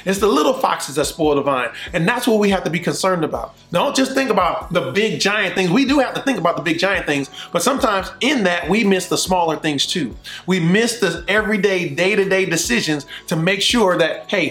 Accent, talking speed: American, 235 wpm